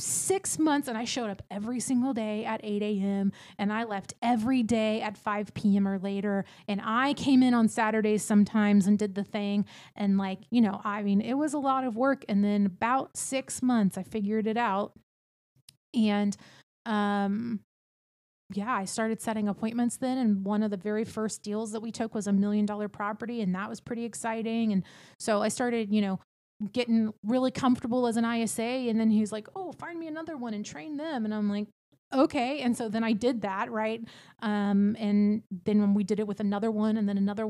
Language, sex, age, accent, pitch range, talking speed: English, female, 30-49, American, 205-235 Hz, 205 wpm